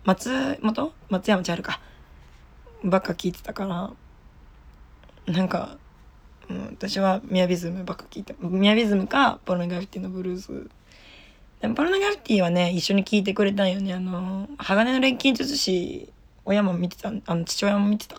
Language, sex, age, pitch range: Japanese, female, 20-39, 165-205 Hz